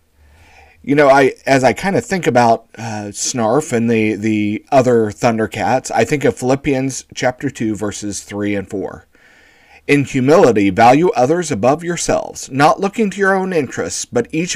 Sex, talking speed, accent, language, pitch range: male, 165 wpm, American, English, 110-150 Hz